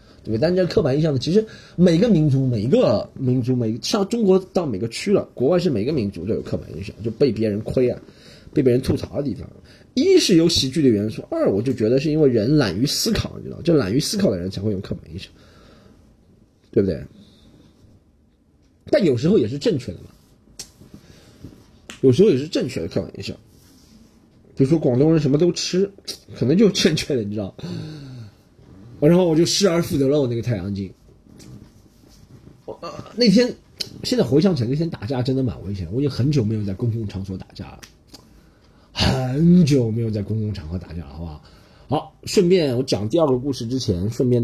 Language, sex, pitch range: Chinese, male, 100-150 Hz